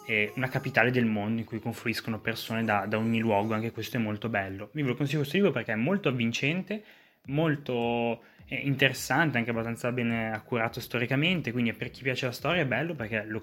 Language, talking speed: Italian, 190 wpm